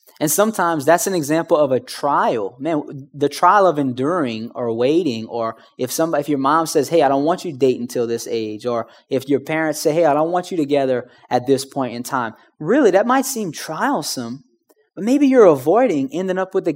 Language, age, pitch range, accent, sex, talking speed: English, 20-39, 140-195 Hz, American, male, 220 wpm